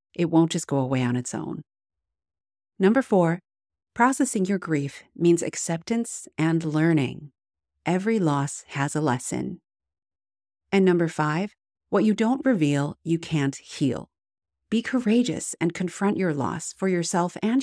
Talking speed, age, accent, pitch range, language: 140 wpm, 40-59, American, 140-195 Hz, English